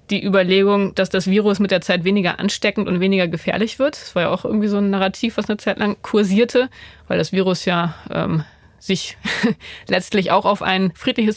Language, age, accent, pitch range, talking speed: German, 20-39, German, 180-215 Hz, 200 wpm